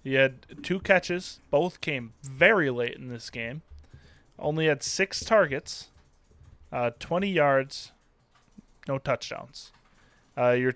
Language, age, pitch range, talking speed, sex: English, 20-39, 125-160 Hz, 125 wpm, male